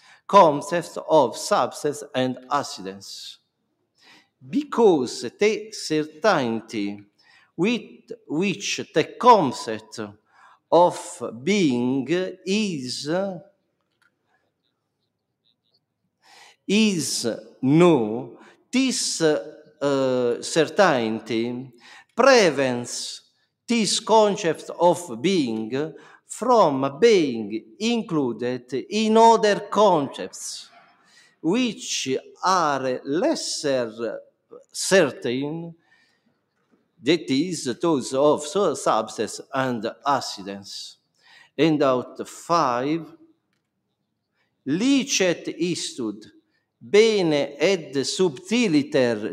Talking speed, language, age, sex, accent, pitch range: 60 wpm, English, 50-69, male, Italian, 125-205 Hz